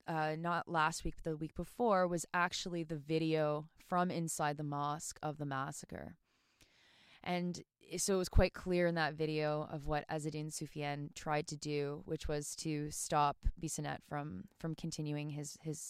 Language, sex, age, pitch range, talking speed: English, female, 20-39, 155-180 Hz, 165 wpm